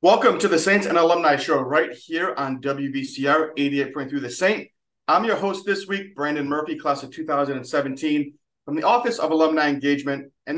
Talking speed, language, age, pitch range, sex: 180 wpm, English, 30-49, 140-185 Hz, male